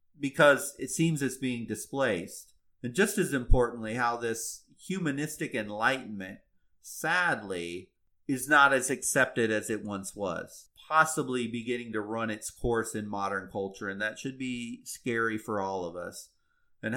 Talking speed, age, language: 150 wpm, 30-49, English